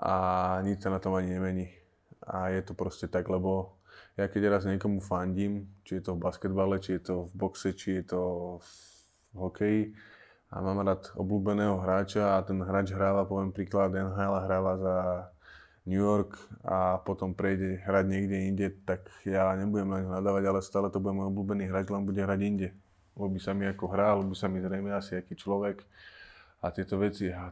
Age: 20-39